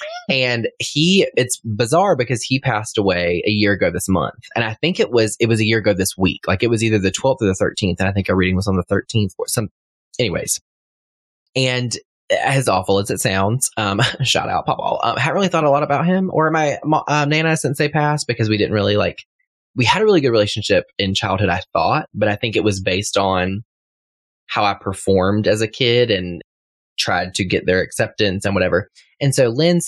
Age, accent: 20-39, American